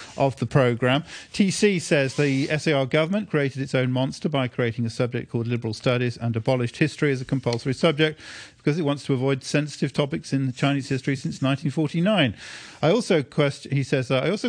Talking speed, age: 190 wpm, 50-69